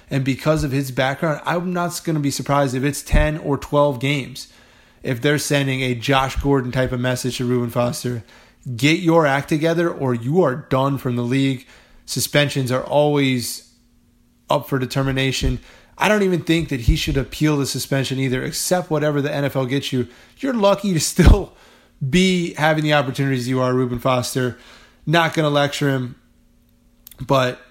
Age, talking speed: 20-39, 175 wpm